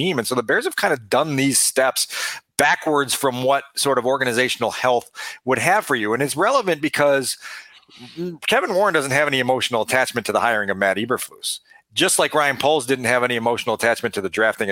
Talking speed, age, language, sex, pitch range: 205 wpm, 40-59, English, male, 125-155 Hz